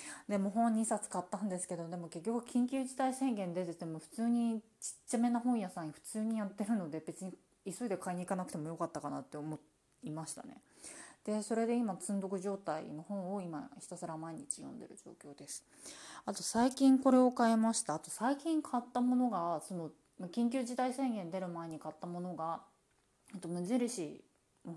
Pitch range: 170-230 Hz